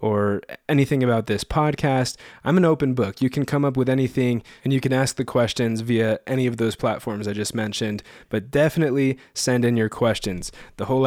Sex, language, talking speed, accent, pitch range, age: male, English, 200 wpm, American, 115-140 Hz, 20-39